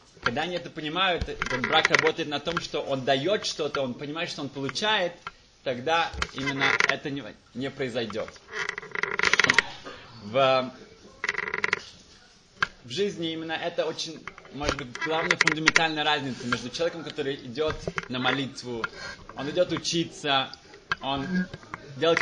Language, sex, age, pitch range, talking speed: Russian, male, 20-39, 135-170 Hz, 120 wpm